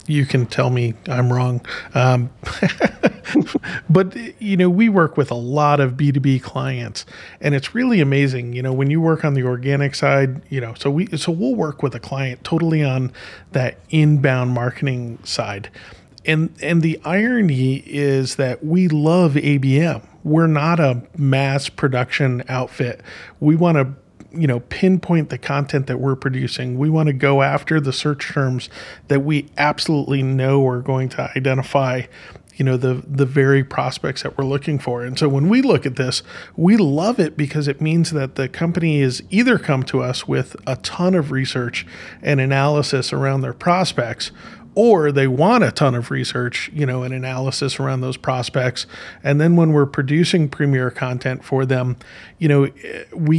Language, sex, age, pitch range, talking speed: English, male, 40-59, 130-155 Hz, 175 wpm